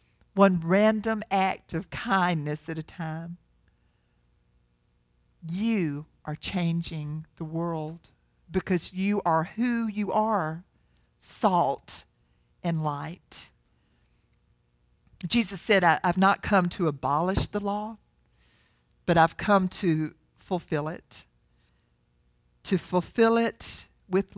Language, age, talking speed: English, 50-69, 100 wpm